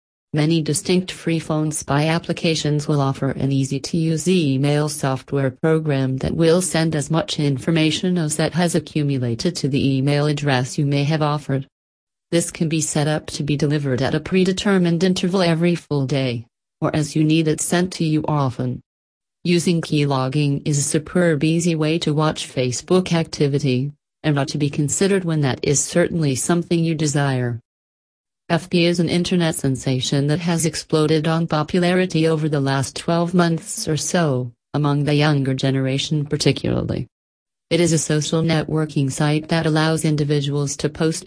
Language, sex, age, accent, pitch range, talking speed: English, female, 40-59, American, 140-165 Hz, 160 wpm